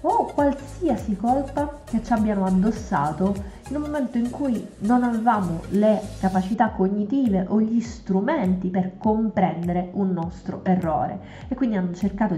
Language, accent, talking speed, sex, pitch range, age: Italian, native, 140 wpm, female, 185-230 Hz, 20-39